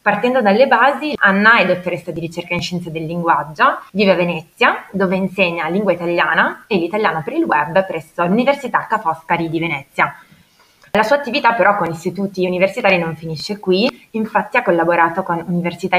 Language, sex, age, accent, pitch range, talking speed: Italian, female, 20-39, native, 165-195 Hz, 170 wpm